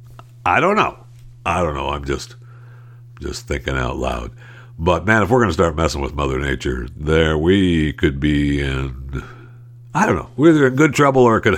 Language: English